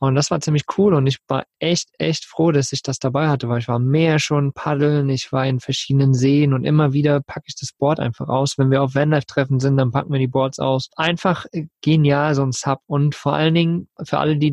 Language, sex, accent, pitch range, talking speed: German, male, German, 130-150 Hz, 245 wpm